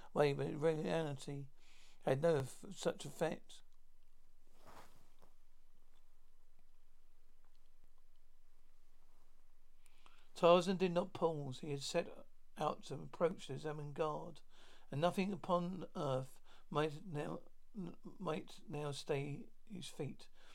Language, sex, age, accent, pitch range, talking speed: English, male, 60-79, British, 145-175 Hz, 95 wpm